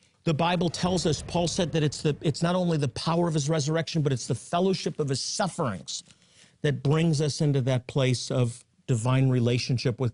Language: English